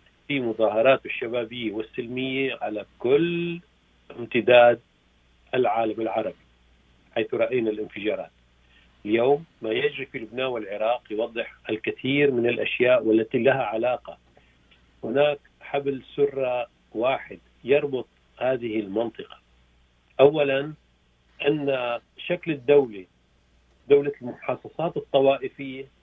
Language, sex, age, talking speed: Arabic, male, 50-69, 90 wpm